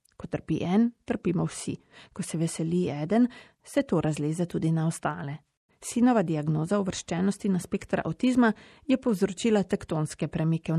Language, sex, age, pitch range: Italian, female, 30-49, 165-225 Hz